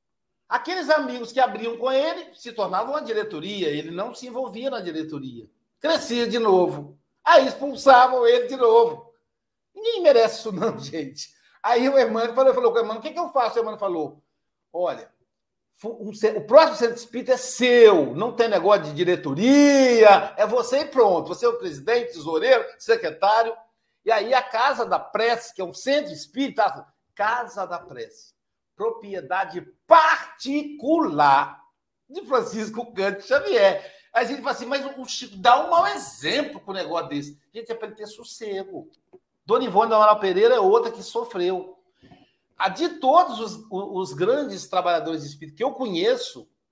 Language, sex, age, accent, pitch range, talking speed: Portuguese, male, 60-79, Brazilian, 195-285 Hz, 170 wpm